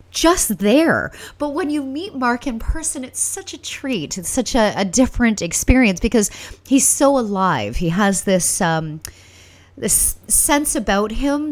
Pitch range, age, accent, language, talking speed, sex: 165-230 Hz, 30-49, American, English, 160 wpm, female